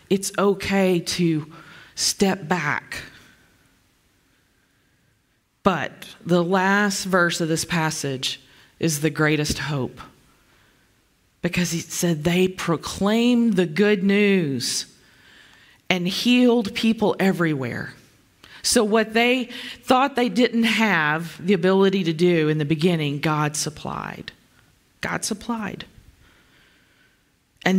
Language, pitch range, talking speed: English, 145-190 Hz, 100 wpm